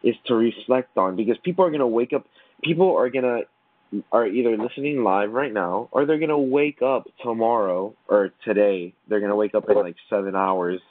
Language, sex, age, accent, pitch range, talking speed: English, male, 20-39, American, 105-130 Hz, 215 wpm